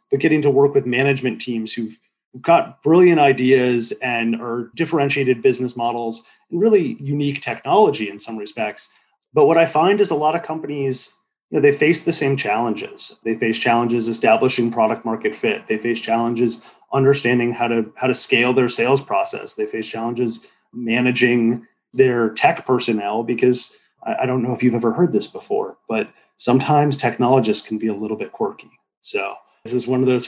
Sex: male